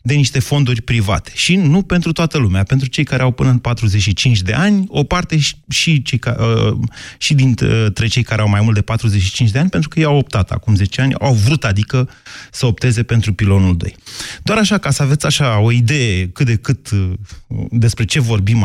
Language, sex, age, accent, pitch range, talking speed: Romanian, male, 30-49, native, 110-150 Hz, 205 wpm